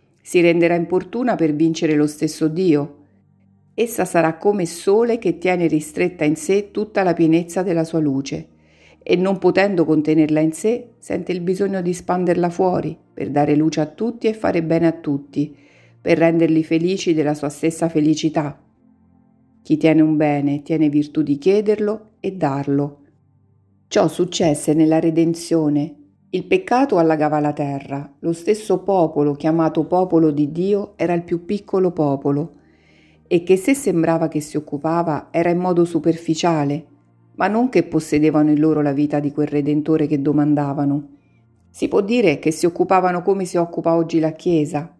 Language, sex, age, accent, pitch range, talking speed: Italian, female, 50-69, native, 150-175 Hz, 160 wpm